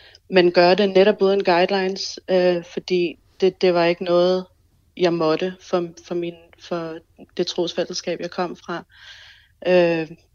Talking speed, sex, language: 145 wpm, female, Danish